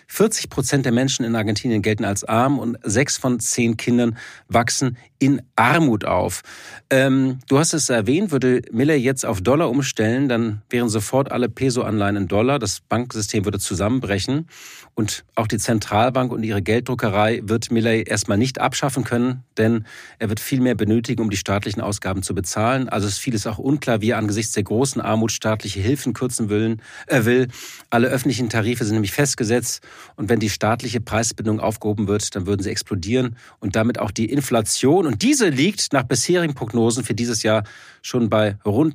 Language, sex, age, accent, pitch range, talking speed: German, male, 40-59, German, 110-130 Hz, 180 wpm